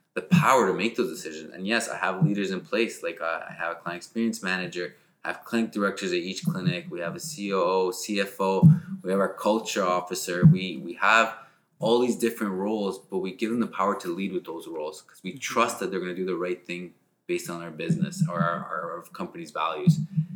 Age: 20-39